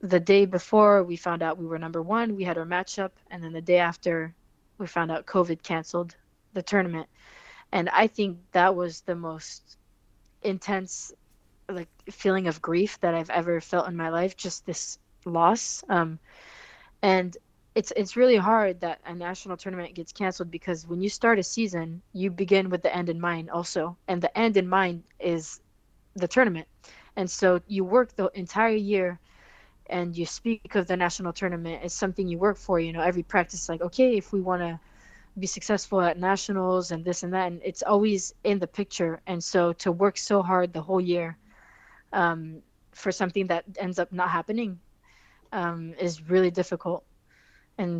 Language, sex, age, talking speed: English, female, 20-39, 185 wpm